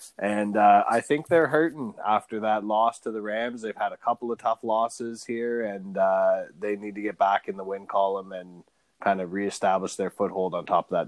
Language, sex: English, male